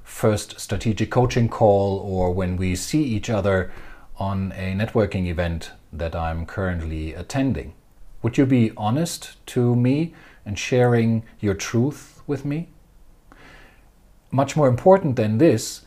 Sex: male